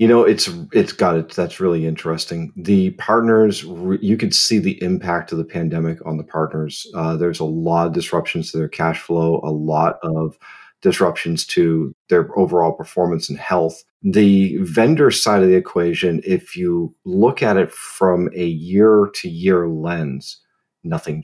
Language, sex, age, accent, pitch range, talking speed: English, male, 40-59, American, 80-100 Hz, 170 wpm